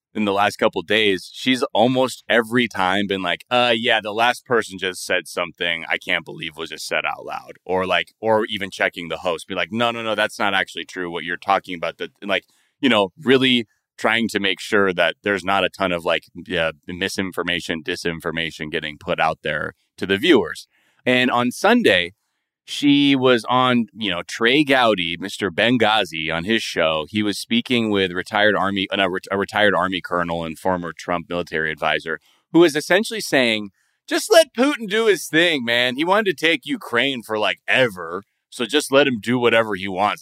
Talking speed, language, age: 195 wpm, English, 20-39